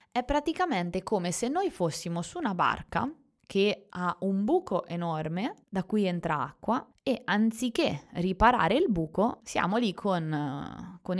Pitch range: 170-220 Hz